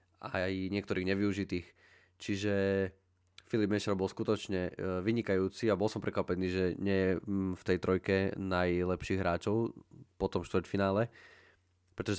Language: Slovak